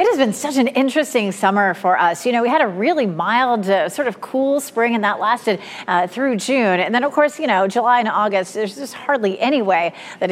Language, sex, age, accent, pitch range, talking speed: English, female, 40-59, American, 205-270 Hz, 245 wpm